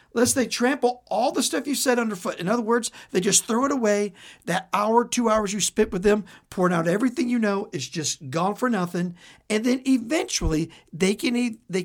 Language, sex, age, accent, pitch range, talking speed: English, male, 60-79, American, 165-235 Hz, 215 wpm